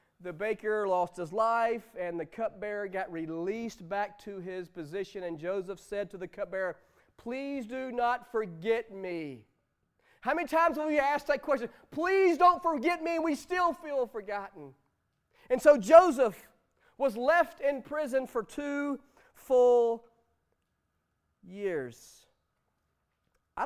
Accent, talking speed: American, 135 wpm